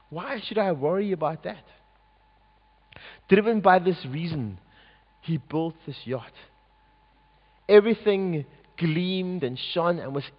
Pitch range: 145-195 Hz